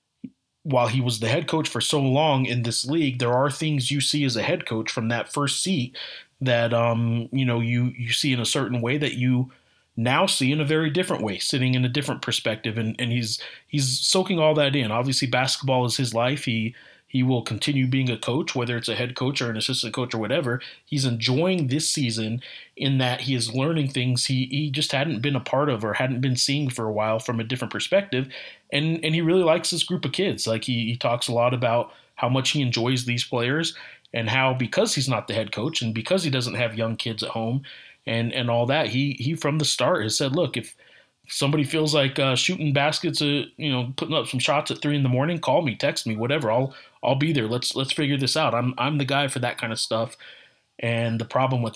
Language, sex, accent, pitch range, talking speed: English, male, American, 115-145 Hz, 240 wpm